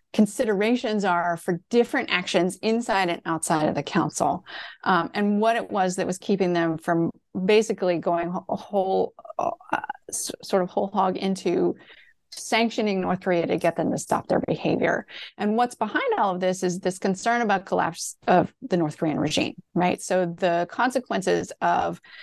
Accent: American